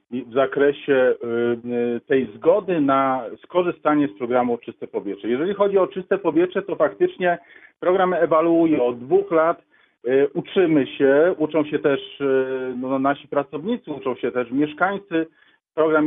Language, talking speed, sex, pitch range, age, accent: Polish, 125 wpm, male, 145-175 Hz, 40-59, native